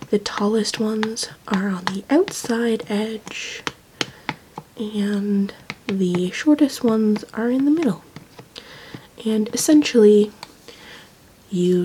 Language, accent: English, American